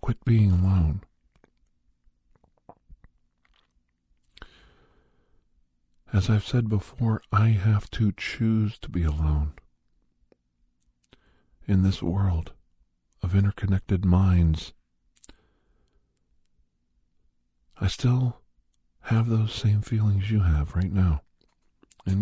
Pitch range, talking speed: 75-100 Hz, 85 wpm